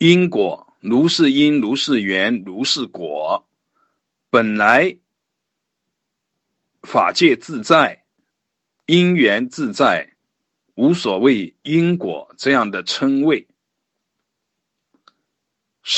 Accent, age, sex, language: native, 50-69, male, Chinese